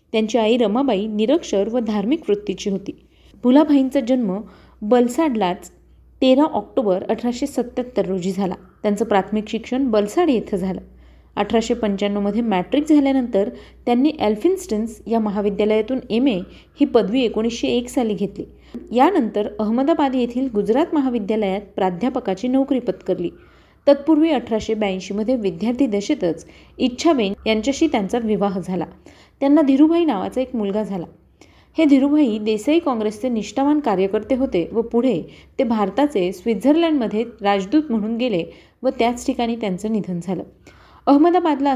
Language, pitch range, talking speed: Marathi, 205-270 Hz, 120 wpm